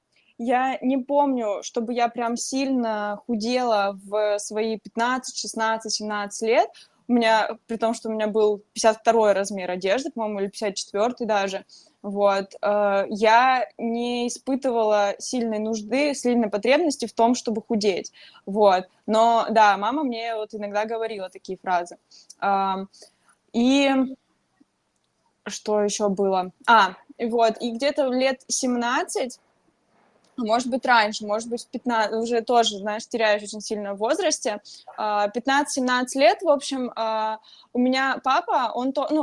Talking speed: 130 wpm